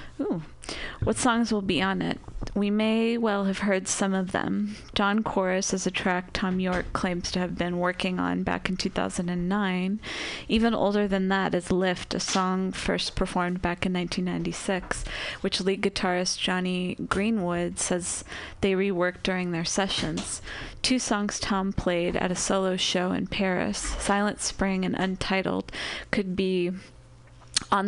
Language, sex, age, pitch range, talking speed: English, female, 20-39, 185-210 Hz, 155 wpm